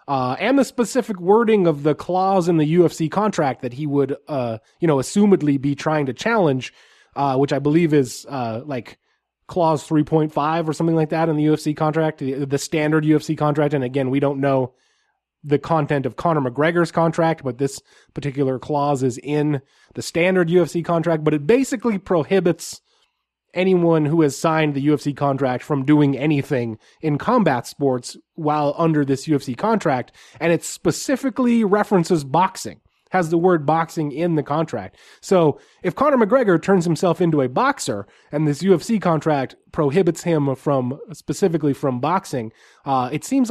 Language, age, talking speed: English, 20-39, 165 wpm